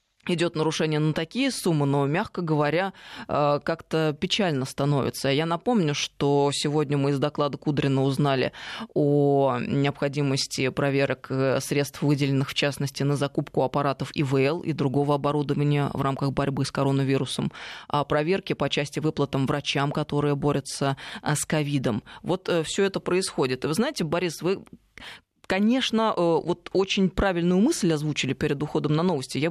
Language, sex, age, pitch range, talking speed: Russian, female, 20-39, 140-180 Hz, 140 wpm